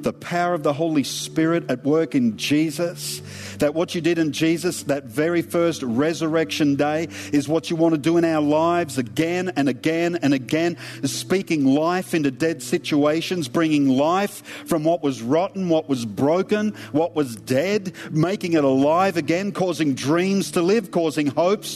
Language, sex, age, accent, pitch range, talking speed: English, male, 50-69, Australian, 150-195 Hz, 170 wpm